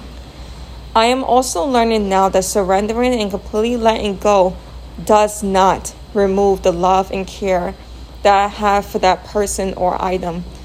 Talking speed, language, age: 145 wpm, English, 20-39